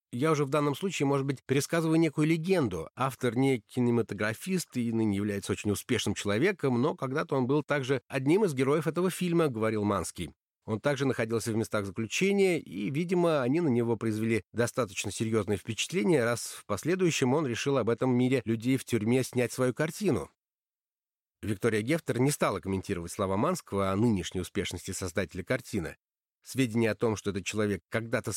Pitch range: 105-145 Hz